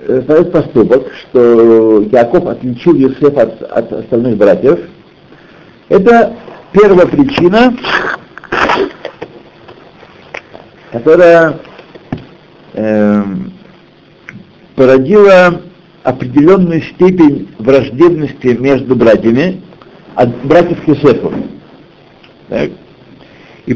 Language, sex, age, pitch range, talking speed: Russian, male, 60-79, 130-180 Hz, 60 wpm